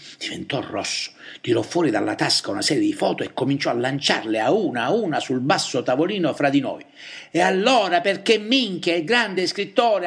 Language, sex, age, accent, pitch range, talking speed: Italian, male, 60-79, native, 175-275 Hz, 185 wpm